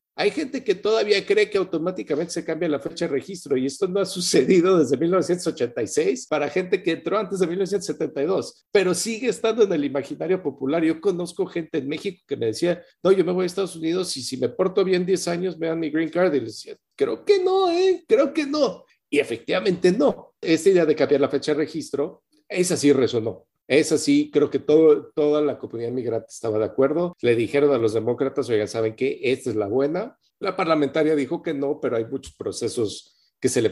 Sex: male